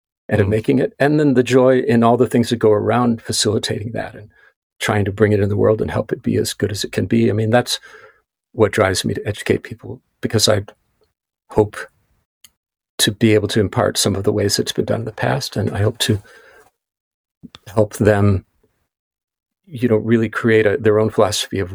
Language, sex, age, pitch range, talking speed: English, male, 50-69, 105-120 Hz, 210 wpm